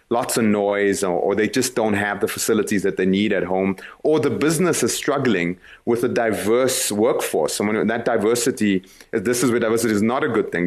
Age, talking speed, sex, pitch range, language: 30-49, 210 wpm, male, 100-130 Hz, English